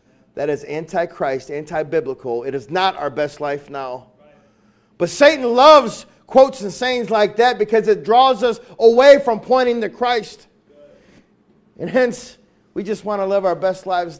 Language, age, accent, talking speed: English, 40-59, American, 170 wpm